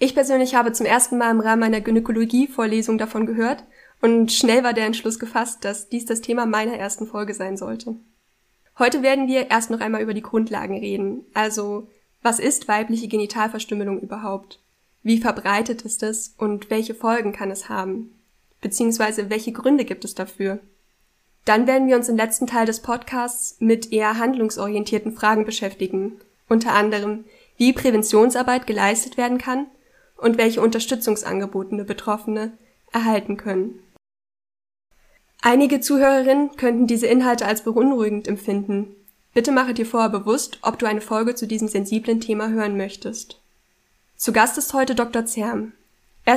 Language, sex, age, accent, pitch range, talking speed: German, female, 10-29, German, 215-240 Hz, 150 wpm